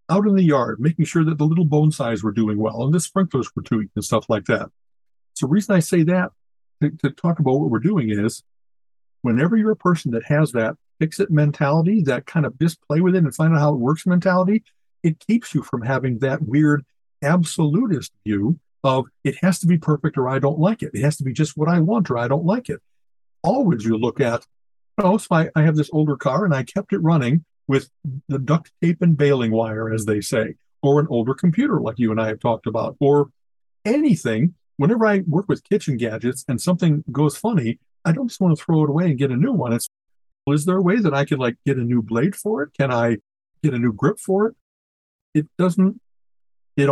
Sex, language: male, English